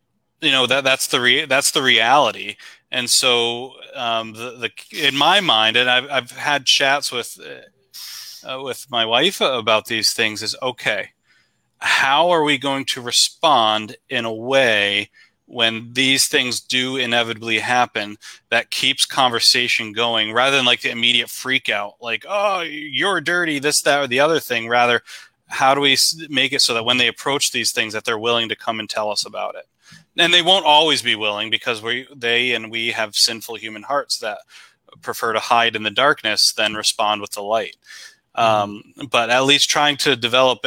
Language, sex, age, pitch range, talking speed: English, male, 30-49, 115-135 Hz, 185 wpm